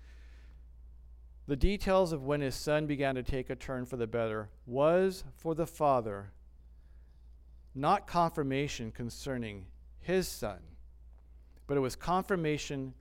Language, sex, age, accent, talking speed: English, male, 50-69, American, 125 wpm